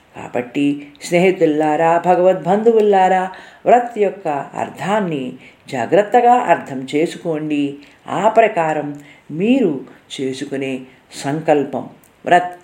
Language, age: Telugu, 50-69